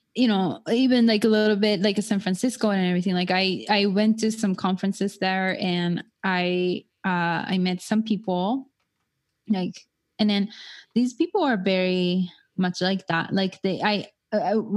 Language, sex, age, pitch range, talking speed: English, female, 20-39, 180-210 Hz, 170 wpm